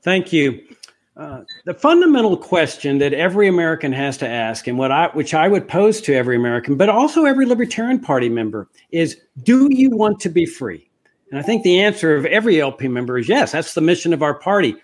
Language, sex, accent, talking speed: English, male, American, 210 wpm